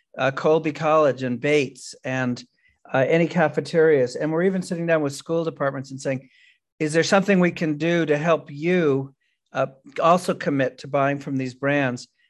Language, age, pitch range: English, 50-69, 135-165 Hz